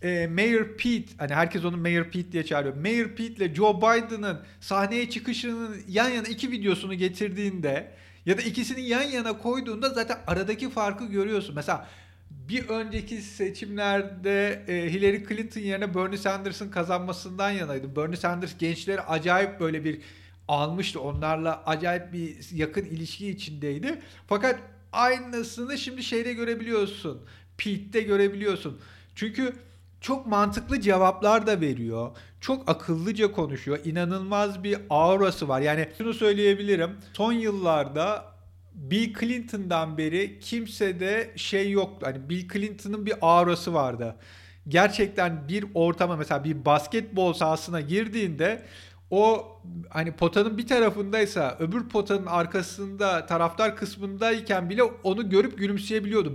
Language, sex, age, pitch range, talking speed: Turkish, male, 50-69, 160-215 Hz, 120 wpm